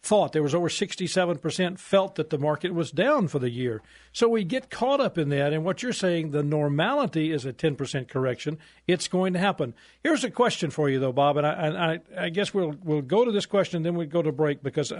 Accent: American